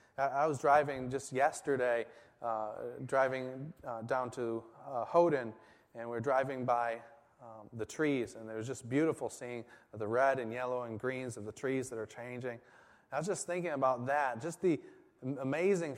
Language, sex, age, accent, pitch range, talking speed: English, male, 30-49, American, 115-145 Hz, 175 wpm